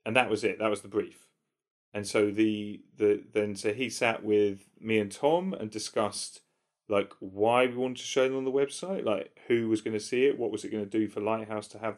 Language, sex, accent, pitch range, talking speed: English, male, British, 105-120 Hz, 235 wpm